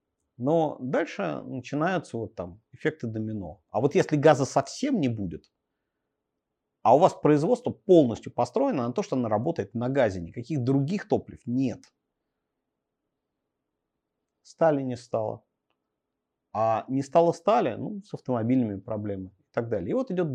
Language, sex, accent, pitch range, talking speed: Russian, male, native, 105-150 Hz, 140 wpm